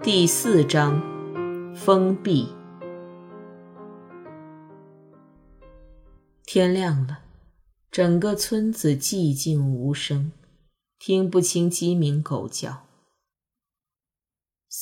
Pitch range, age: 140-180 Hz, 20-39